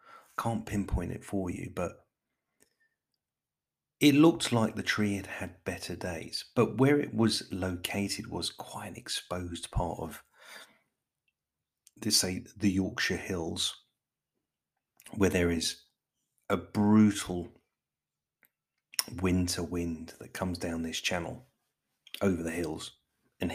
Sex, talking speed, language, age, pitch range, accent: male, 120 wpm, English, 40-59, 85-110 Hz, British